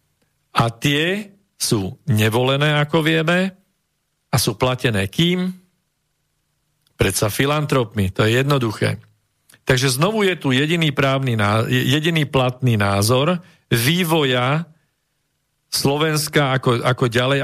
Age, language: 50-69, Slovak